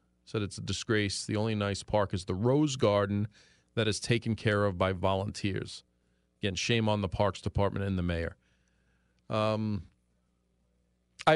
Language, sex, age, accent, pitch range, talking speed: English, male, 40-59, American, 90-115 Hz, 160 wpm